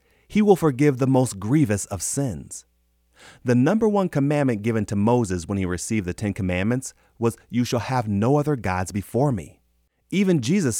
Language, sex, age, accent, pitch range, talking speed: English, male, 30-49, American, 90-130 Hz, 180 wpm